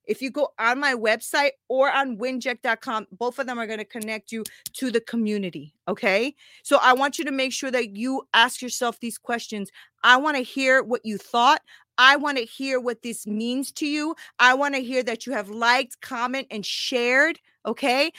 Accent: American